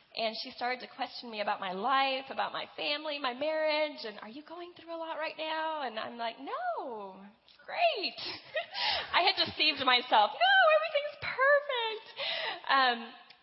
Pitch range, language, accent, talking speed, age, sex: 205-265 Hz, English, American, 165 wpm, 10-29, female